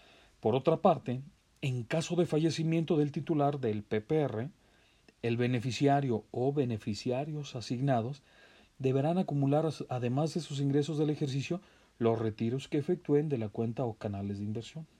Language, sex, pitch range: Spanish, male, 115-145 Hz